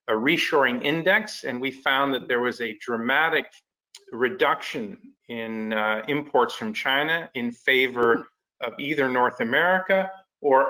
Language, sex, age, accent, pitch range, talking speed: English, male, 40-59, American, 115-150 Hz, 135 wpm